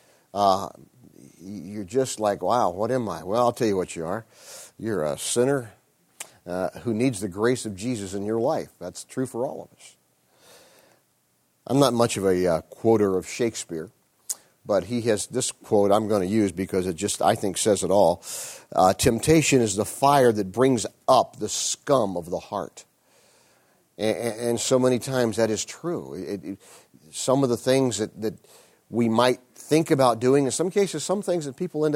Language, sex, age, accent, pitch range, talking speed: English, male, 50-69, American, 105-130 Hz, 190 wpm